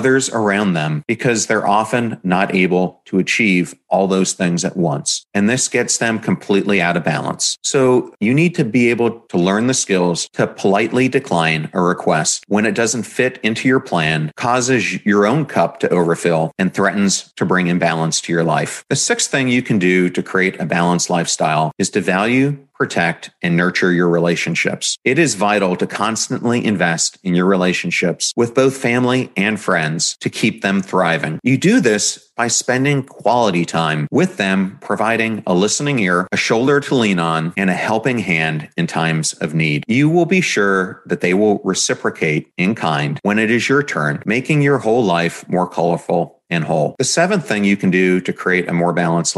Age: 40-59